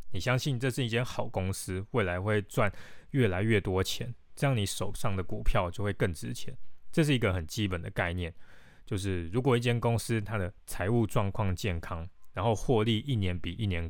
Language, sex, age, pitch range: Chinese, male, 20-39, 90-115 Hz